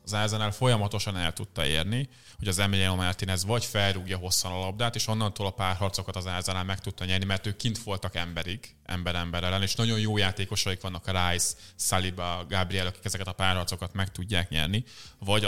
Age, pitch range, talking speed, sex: 20-39, 95-110 Hz, 185 wpm, male